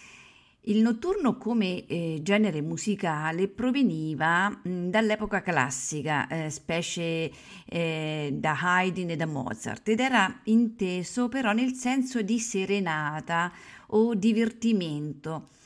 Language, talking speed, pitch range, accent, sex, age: Italian, 105 wpm, 155-205 Hz, native, female, 50-69